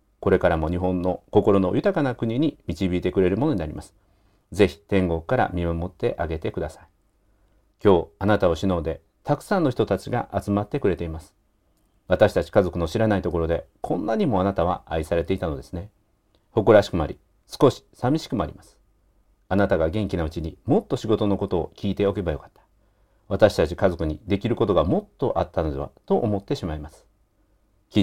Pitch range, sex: 85-105 Hz, male